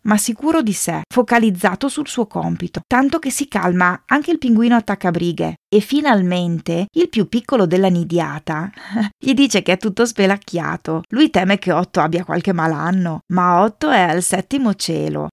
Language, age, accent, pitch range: Italian, 30-49, native, 180-250 Hz